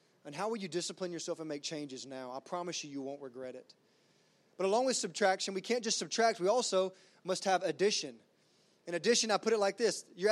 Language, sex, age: English, male, 20-39